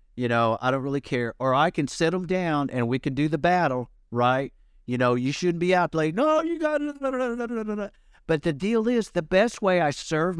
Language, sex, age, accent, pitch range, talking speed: English, male, 50-69, American, 135-200 Hz, 225 wpm